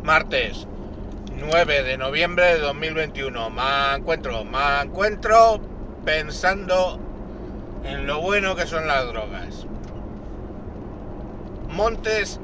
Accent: Spanish